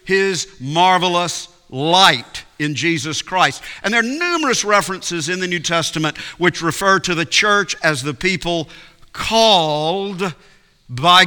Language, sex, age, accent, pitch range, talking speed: English, male, 50-69, American, 140-185 Hz, 135 wpm